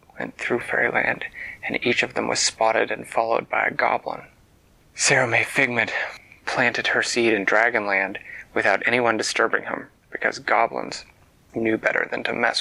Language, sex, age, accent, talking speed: English, male, 30-49, American, 150 wpm